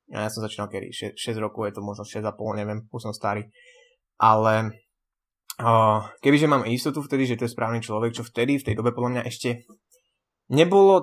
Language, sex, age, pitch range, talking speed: Slovak, male, 20-39, 115-140 Hz, 195 wpm